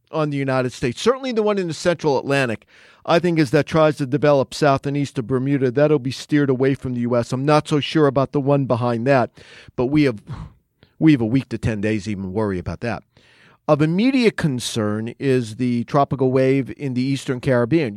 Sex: male